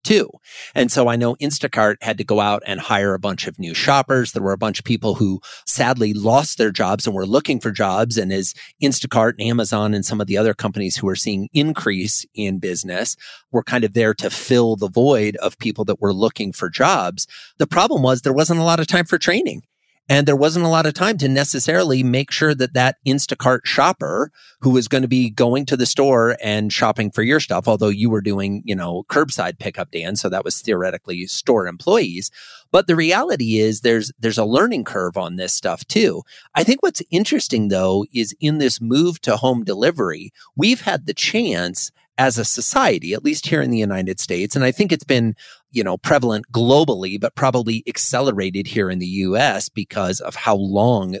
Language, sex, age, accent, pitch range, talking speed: English, male, 30-49, American, 105-140 Hz, 210 wpm